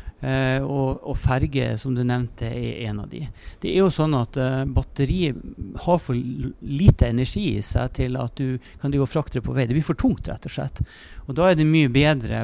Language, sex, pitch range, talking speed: English, male, 120-155 Hz, 220 wpm